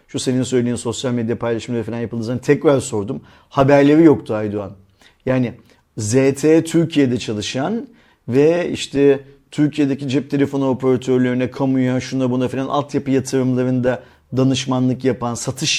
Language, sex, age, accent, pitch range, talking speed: Turkish, male, 50-69, native, 125-155 Hz, 120 wpm